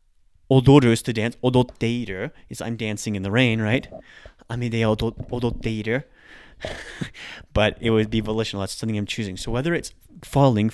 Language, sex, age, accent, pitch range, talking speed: English, male, 30-49, American, 105-130 Hz, 150 wpm